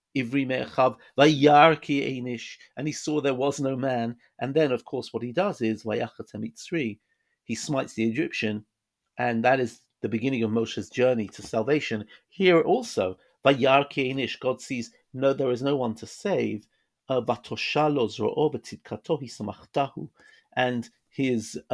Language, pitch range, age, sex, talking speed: English, 115-150 Hz, 50-69, male, 120 wpm